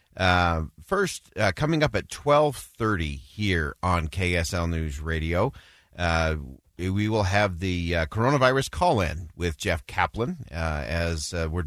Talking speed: 140 wpm